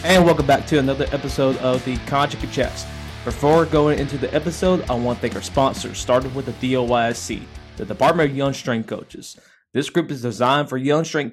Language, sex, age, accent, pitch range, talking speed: English, male, 20-39, American, 125-155 Hz, 200 wpm